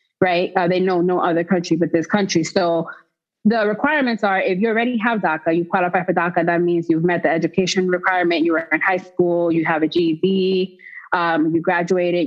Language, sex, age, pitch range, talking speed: English, female, 20-39, 175-200 Hz, 205 wpm